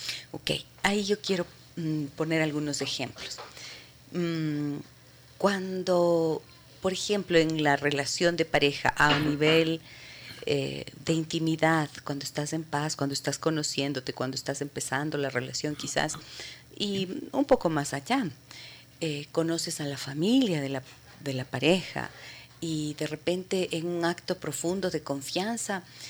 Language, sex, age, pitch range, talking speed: Spanish, female, 40-59, 140-175 Hz, 135 wpm